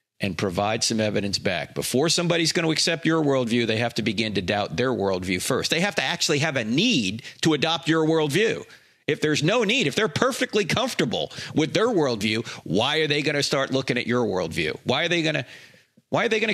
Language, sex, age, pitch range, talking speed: English, male, 40-59, 110-160 Hz, 225 wpm